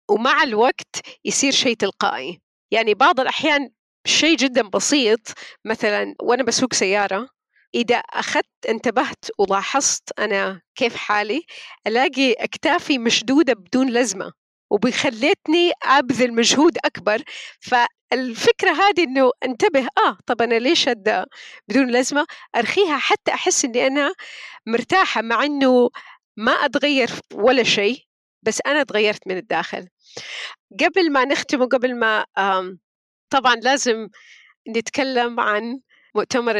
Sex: female